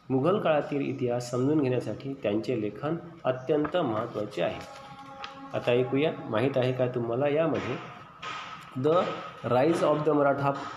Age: 30-49